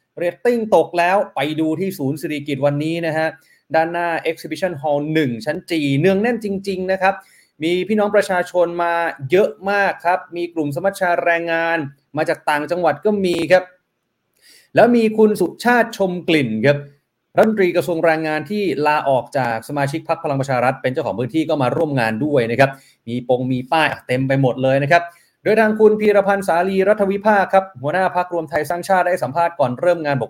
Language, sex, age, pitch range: Thai, male, 20-39, 140-185 Hz